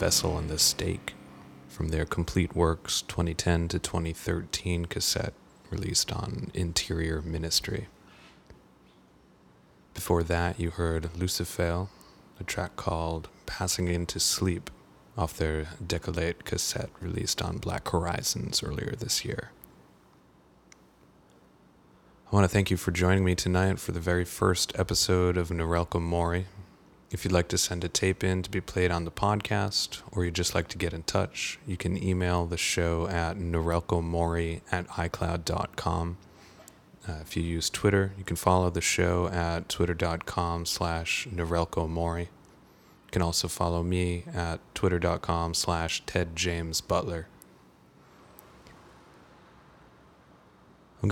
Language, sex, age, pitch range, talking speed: English, male, 20-39, 85-95 Hz, 130 wpm